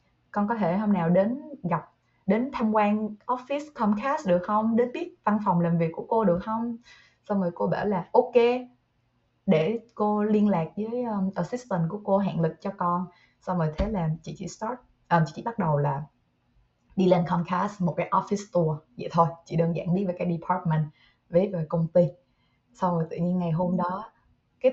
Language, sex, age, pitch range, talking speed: Vietnamese, female, 20-39, 165-215 Hz, 205 wpm